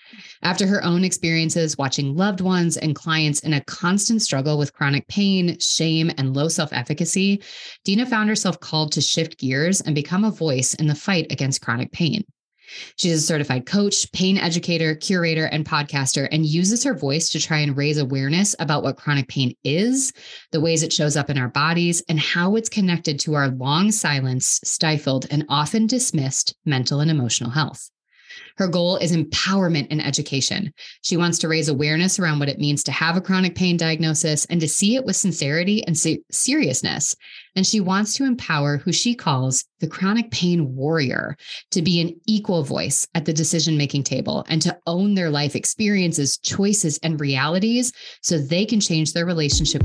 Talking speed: 180 wpm